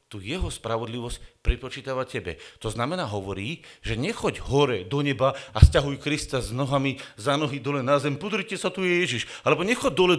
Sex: male